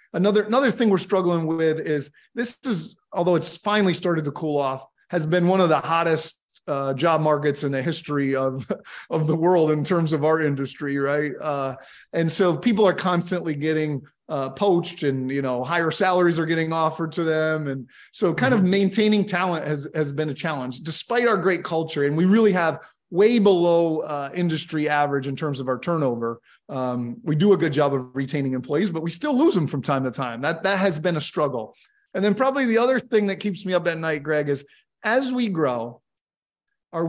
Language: English